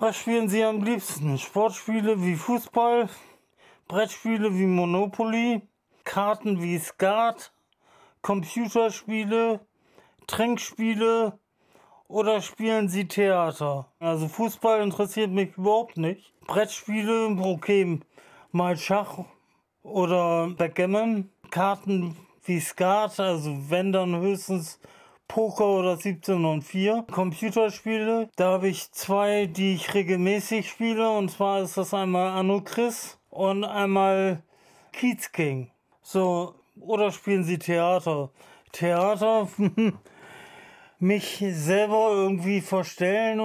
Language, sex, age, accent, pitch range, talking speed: German, male, 40-59, German, 180-215 Hz, 100 wpm